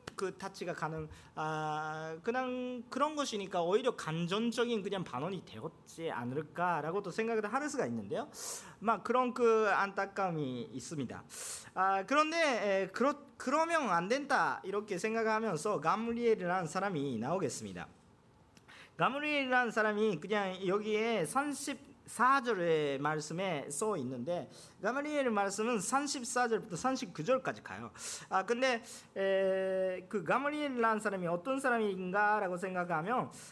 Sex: male